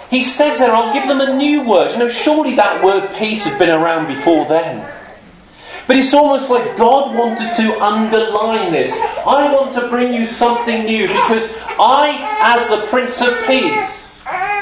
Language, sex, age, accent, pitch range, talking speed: English, male, 40-59, British, 205-270 Hz, 175 wpm